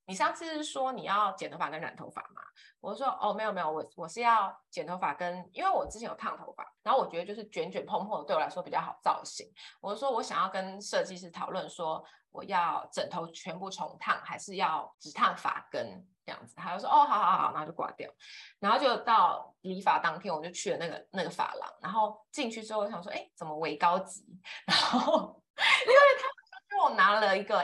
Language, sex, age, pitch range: Chinese, female, 20-39, 185-285 Hz